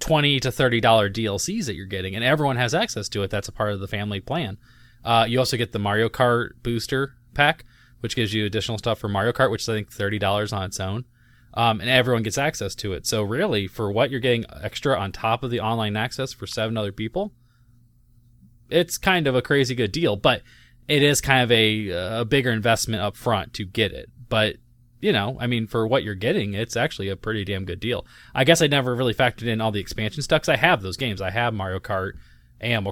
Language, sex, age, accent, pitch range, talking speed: English, male, 20-39, American, 105-125 Hz, 235 wpm